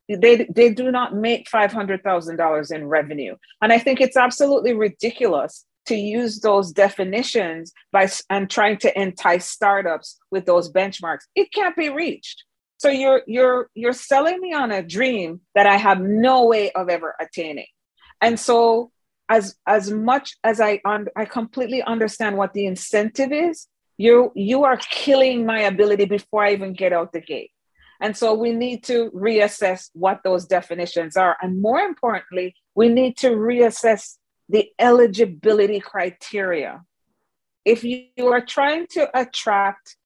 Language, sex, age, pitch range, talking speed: English, female, 40-59, 190-250 Hz, 150 wpm